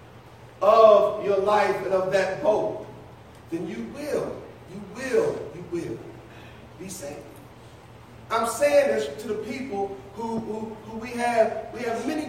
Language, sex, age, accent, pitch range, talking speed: English, male, 40-59, American, 200-290 Hz, 145 wpm